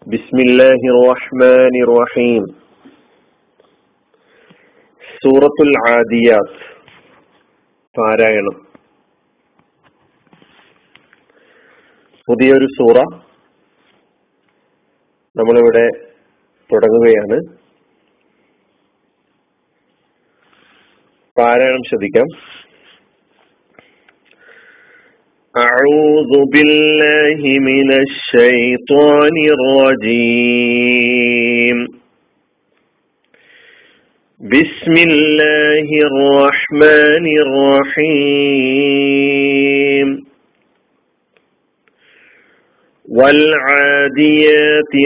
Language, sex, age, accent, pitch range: Malayalam, male, 40-59, native, 130-150 Hz